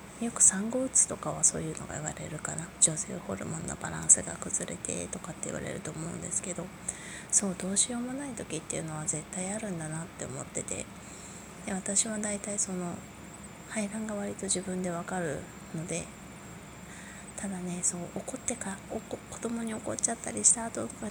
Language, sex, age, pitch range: Japanese, female, 20-39, 170-205 Hz